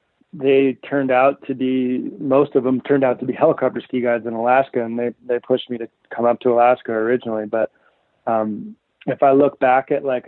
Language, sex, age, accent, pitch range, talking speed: English, male, 20-39, American, 120-135 Hz, 210 wpm